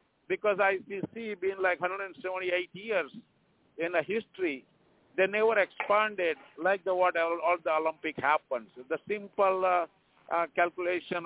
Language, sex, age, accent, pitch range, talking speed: English, male, 50-69, Indian, 155-185 Hz, 150 wpm